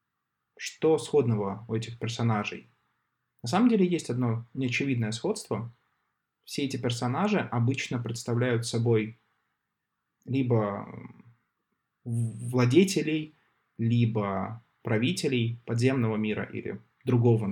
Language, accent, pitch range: Russian, native, 115-130 Hz